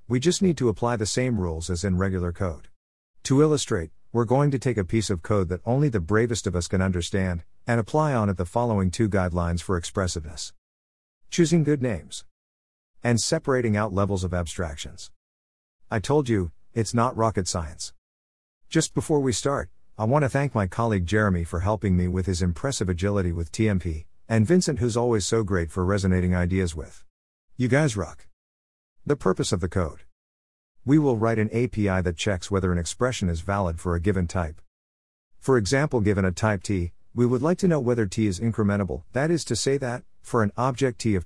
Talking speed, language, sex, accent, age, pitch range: 195 wpm, English, male, American, 50-69, 85-120 Hz